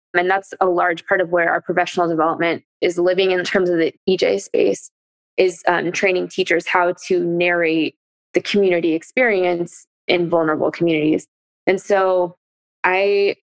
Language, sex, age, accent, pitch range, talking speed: English, female, 20-39, American, 175-200 Hz, 150 wpm